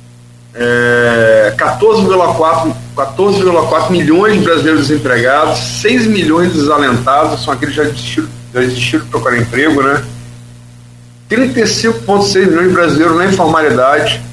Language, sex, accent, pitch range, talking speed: Portuguese, male, Brazilian, 120-170 Hz, 90 wpm